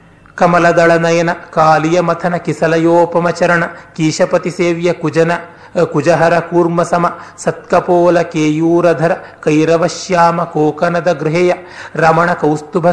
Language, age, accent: Kannada, 40-59, native